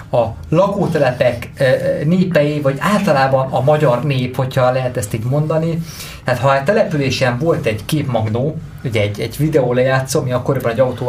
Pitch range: 120-150 Hz